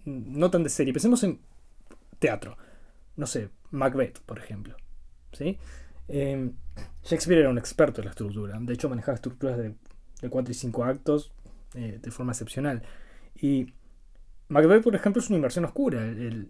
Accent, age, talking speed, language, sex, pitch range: Argentinian, 20-39, 155 wpm, Spanish, male, 100-155 Hz